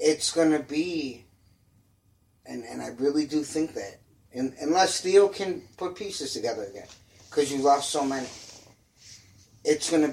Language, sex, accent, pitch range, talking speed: English, male, American, 110-155 Hz, 160 wpm